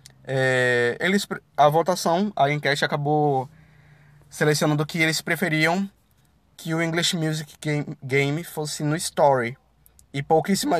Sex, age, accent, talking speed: male, 20-39, Brazilian, 115 wpm